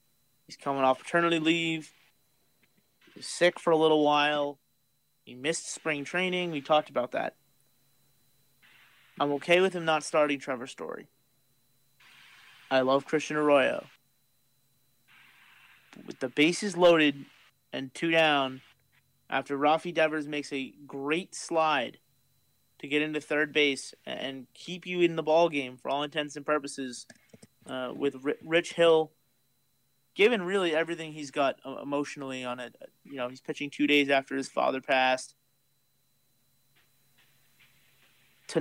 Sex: male